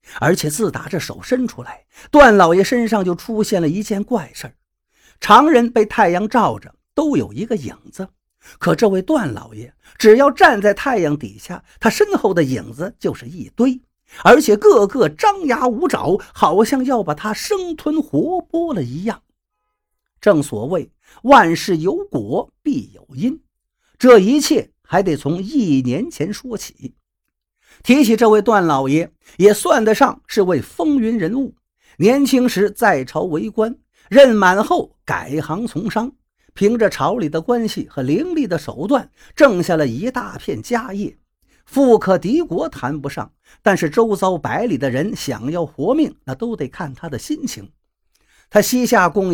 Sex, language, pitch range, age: male, Chinese, 170-260 Hz, 50-69